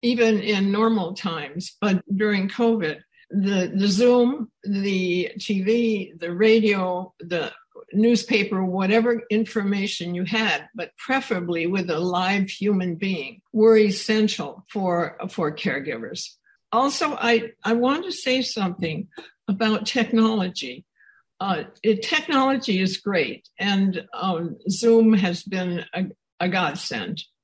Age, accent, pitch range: 60-79, American, 185-230 Hz